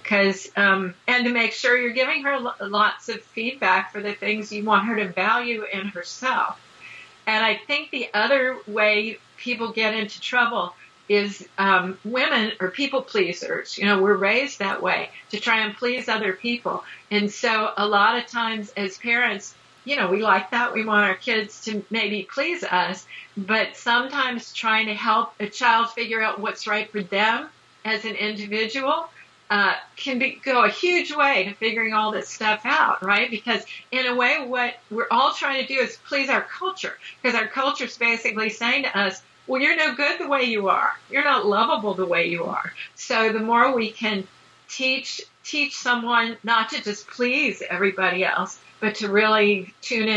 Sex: female